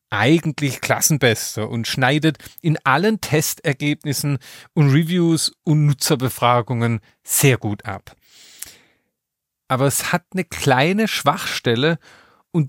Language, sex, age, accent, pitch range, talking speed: German, male, 40-59, German, 120-165 Hz, 100 wpm